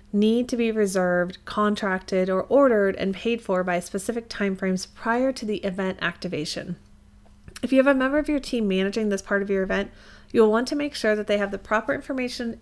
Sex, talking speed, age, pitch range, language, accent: female, 205 wpm, 30-49, 195-240 Hz, English, American